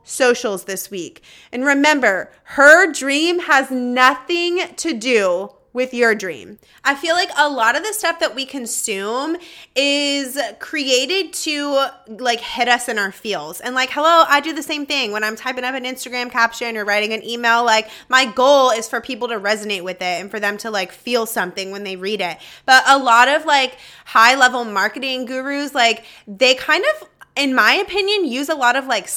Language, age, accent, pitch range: English, 20-39, American, 225-295 Hz